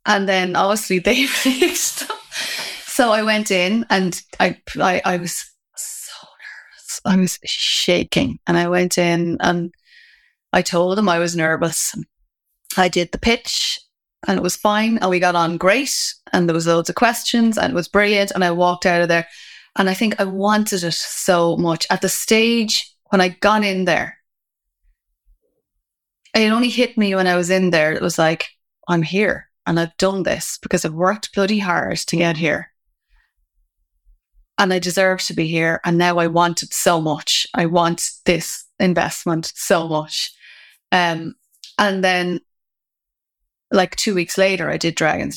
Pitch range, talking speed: 170-205 Hz, 175 wpm